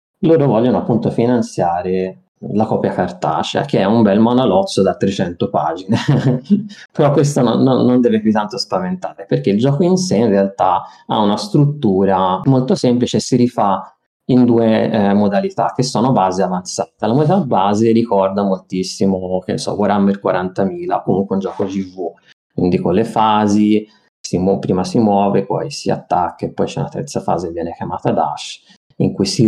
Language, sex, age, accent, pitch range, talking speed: Italian, male, 20-39, native, 95-115 Hz, 170 wpm